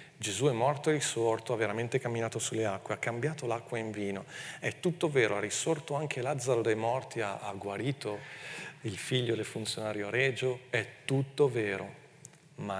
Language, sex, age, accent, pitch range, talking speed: Italian, male, 40-59, native, 110-145 Hz, 170 wpm